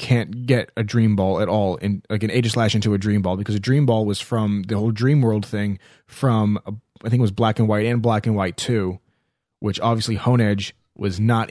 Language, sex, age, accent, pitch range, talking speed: English, male, 20-39, American, 100-120 Hz, 245 wpm